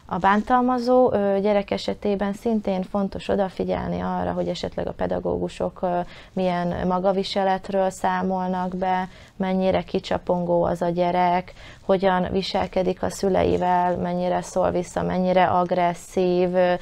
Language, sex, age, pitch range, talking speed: Hungarian, female, 20-39, 180-195 Hz, 105 wpm